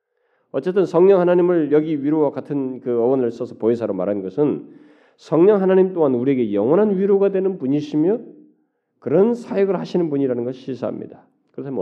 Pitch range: 115-190 Hz